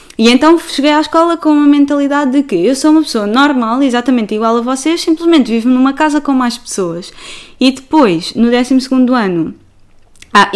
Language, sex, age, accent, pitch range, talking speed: Portuguese, female, 10-29, Brazilian, 220-275 Hz, 180 wpm